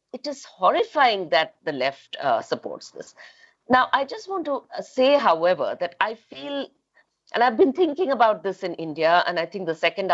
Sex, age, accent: female, 50-69, Indian